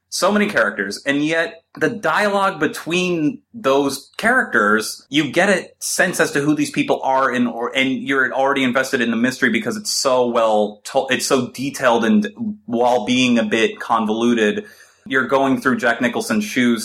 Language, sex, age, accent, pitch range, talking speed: English, male, 30-49, American, 110-165 Hz, 155 wpm